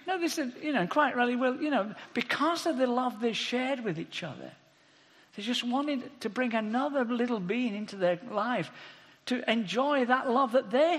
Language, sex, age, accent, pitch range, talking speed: English, male, 50-69, British, 170-275 Hz, 195 wpm